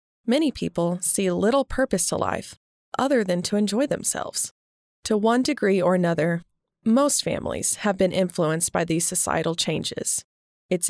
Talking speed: 150 wpm